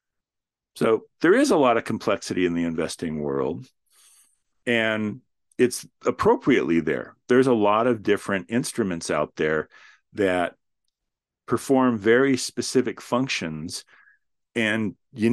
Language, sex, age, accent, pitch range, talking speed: English, male, 50-69, American, 95-130 Hz, 115 wpm